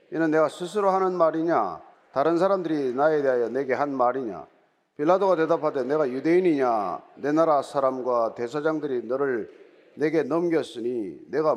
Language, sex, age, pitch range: Korean, male, 40-59, 155-200 Hz